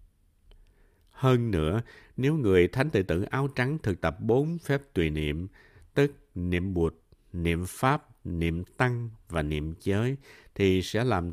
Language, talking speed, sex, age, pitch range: Vietnamese, 150 wpm, male, 60-79, 85-125 Hz